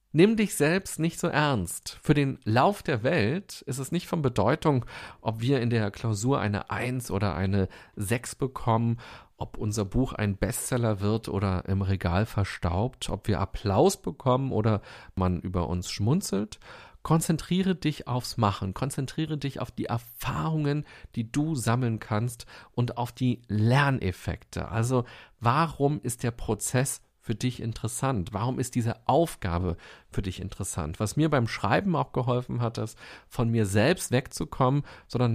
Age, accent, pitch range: 40-59, German, 100-130 Hz